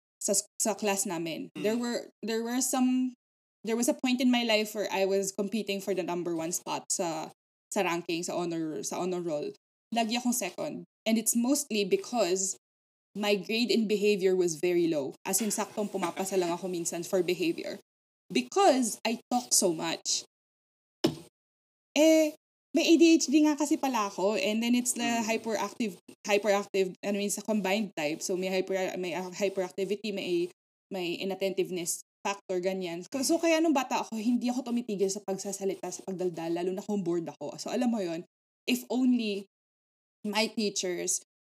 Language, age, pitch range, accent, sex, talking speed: Filipino, 20-39, 190-230 Hz, native, female, 165 wpm